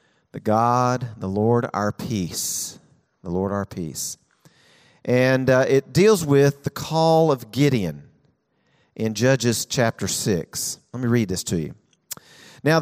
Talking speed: 135 wpm